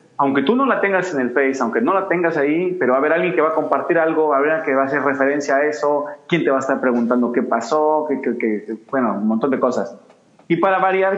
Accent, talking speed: Mexican, 285 wpm